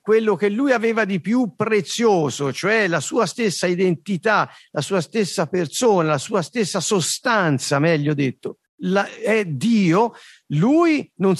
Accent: native